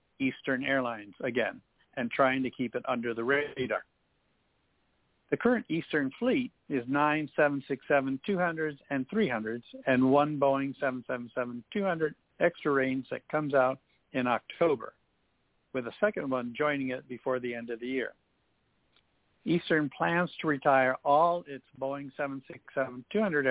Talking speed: 130 wpm